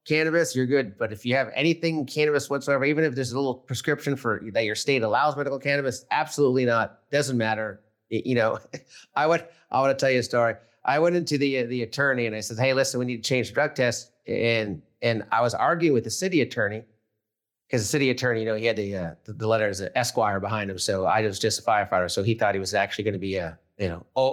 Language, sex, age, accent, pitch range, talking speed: English, male, 30-49, American, 115-140 Hz, 245 wpm